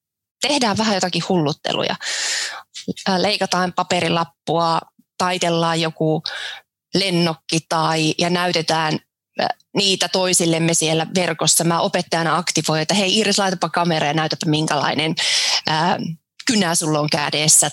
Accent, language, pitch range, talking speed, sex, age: native, Finnish, 165-205 Hz, 100 wpm, female, 20-39